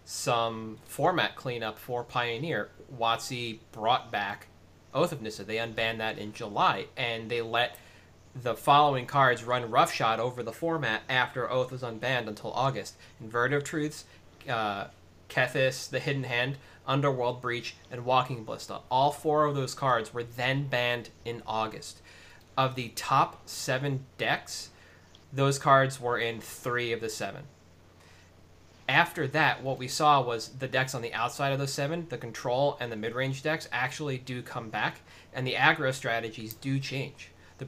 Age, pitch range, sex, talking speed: 20-39, 110-135 Hz, male, 160 wpm